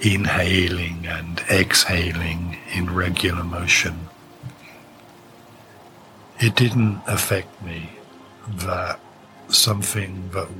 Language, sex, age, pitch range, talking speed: English, male, 50-69, 85-100 Hz, 75 wpm